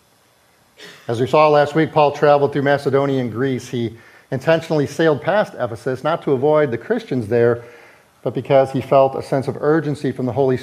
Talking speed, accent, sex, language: 185 wpm, American, male, English